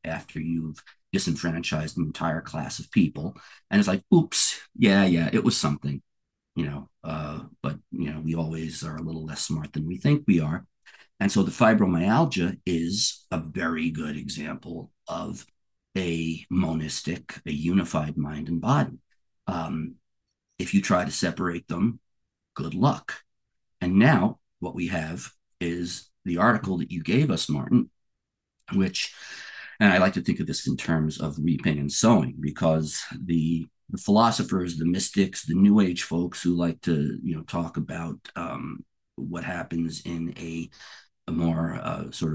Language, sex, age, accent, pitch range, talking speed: English, male, 50-69, American, 80-90 Hz, 160 wpm